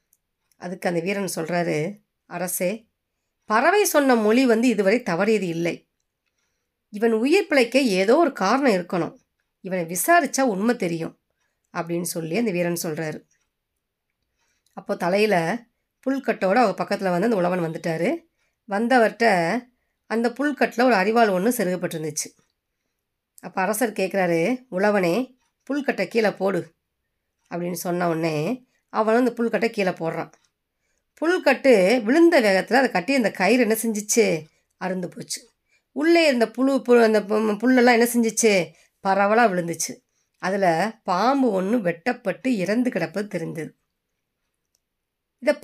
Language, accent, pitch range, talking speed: Tamil, native, 185-255 Hz, 115 wpm